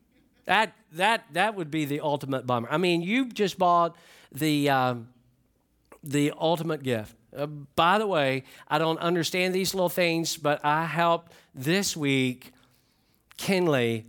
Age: 50-69